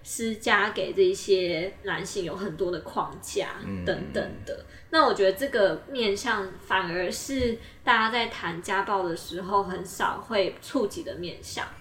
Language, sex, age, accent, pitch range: Chinese, female, 20-39, American, 190-260 Hz